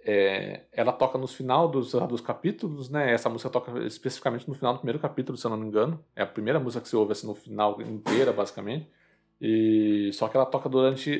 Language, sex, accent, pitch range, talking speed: Portuguese, male, Brazilian, 105-130 Hz, 220 wpm